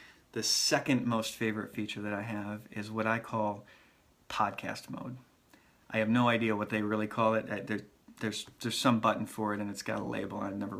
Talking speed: 205 wpm